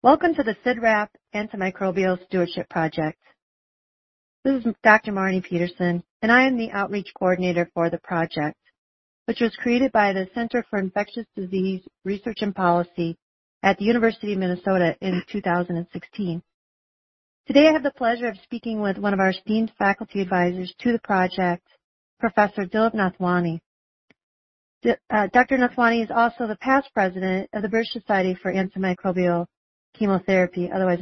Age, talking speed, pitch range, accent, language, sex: 40-59, 145 wpm, 180-225 Hz, American, English, female